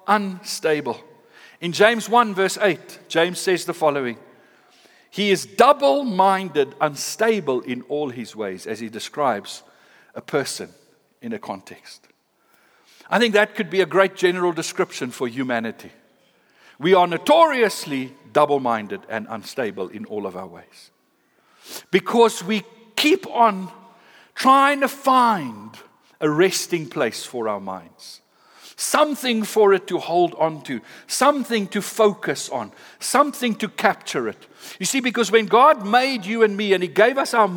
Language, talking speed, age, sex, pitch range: English, 145 wpm, 60-79, male, 170-230 Hz